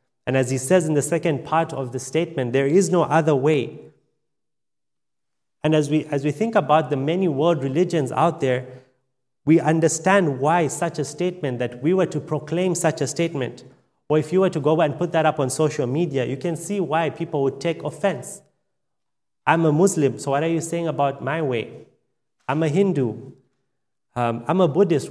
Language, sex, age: English, male, 30-49